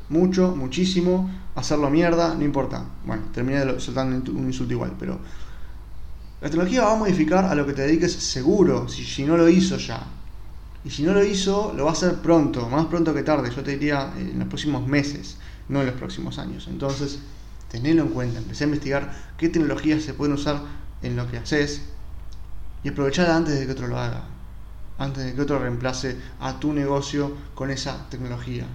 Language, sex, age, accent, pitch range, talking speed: Spanish, male, 20-39, Argentinian, 115-145 Hz, 195 wpm